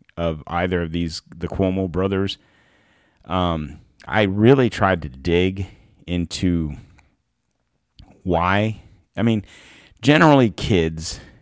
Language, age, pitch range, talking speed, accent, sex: English, 40-59, 80-95 Hz, 100 wpm, American, male